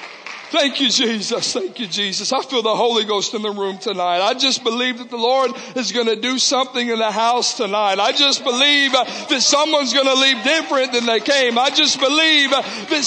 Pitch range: 255-295 Hz